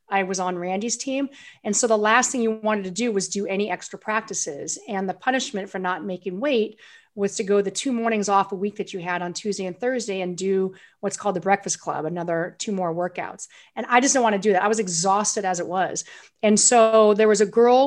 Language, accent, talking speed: English, American, 245 wpm